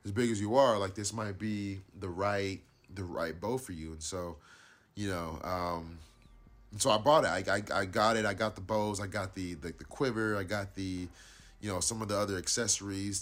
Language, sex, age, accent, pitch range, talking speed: English, male, 30-49, American, 85-105 Hz, 225 wpm